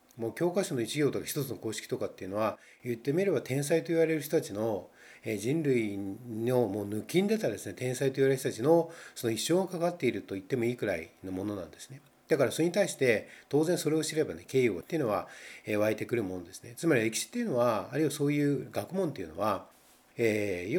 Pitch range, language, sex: 110-150 Hz, Japanese, male